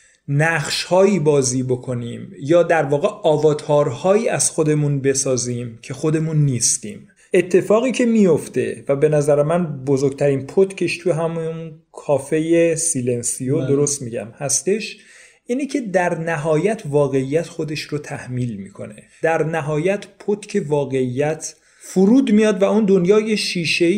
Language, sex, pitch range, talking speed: Persian, male, 135-170 Hz, 120 wpm